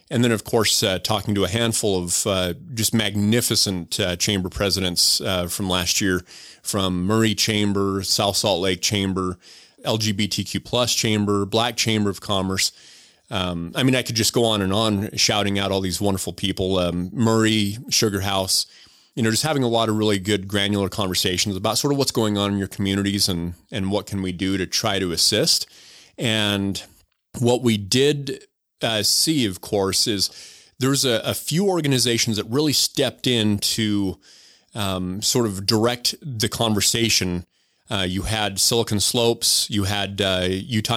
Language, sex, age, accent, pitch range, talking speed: English, male, 30-49, American, 95-115 Hz, 170 wpm